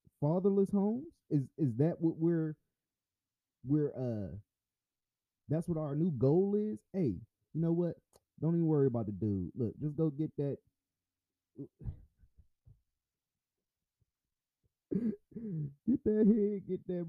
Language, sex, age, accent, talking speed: English, male, 20-39, American, 125 wpm